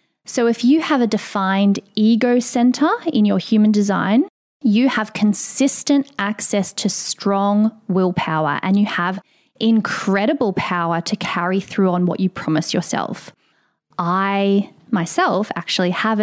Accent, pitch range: Australian, 190-235 Hz